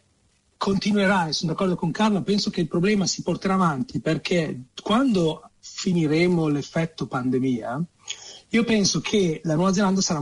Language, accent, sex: Italian, native, male